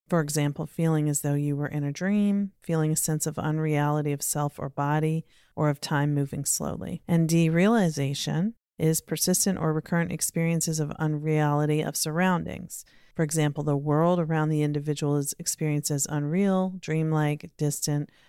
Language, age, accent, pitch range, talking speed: English, 40-59, American, 150-170 Hz, 160 wpm